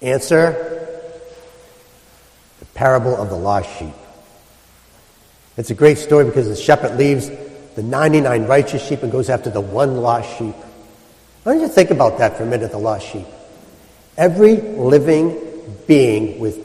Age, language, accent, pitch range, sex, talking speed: 60-79, English, American, 125-190 Hz, male, 150 wpm